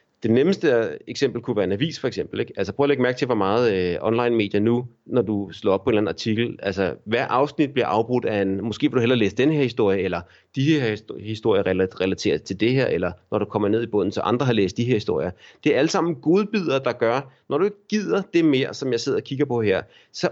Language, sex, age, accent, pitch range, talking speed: Danish, male, 30-49, native, 105-140 Hz, 255 wpm